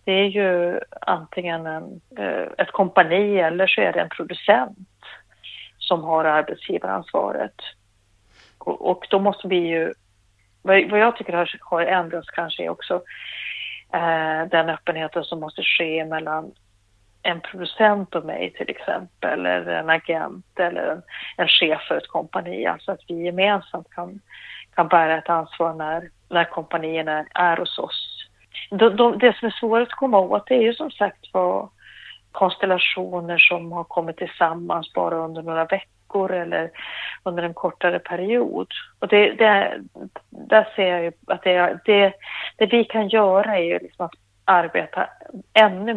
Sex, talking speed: female, 145 wpm